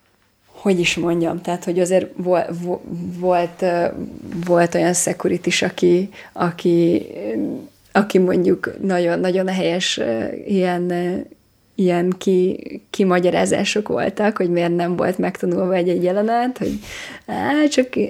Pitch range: 175-205 Hz